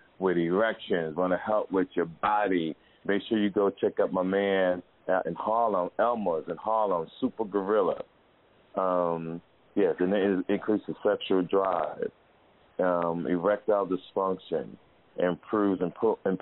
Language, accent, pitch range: English, American, 90-110 Hz